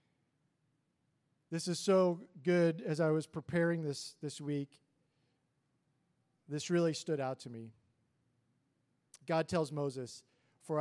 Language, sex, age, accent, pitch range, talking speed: English, male, 40-59, American, 140-170 Hz, 115 wpm